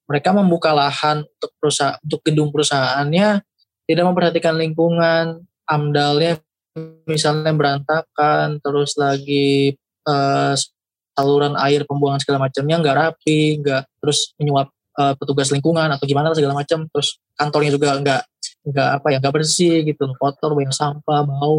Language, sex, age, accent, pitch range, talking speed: Indonesian, male, 20-39, native, 135-155 Hz, 130 wpm